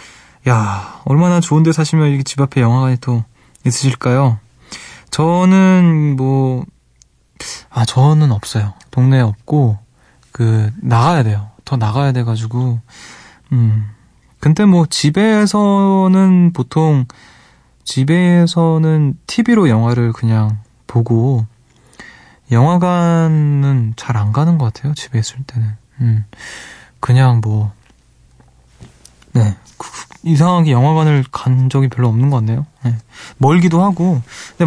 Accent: native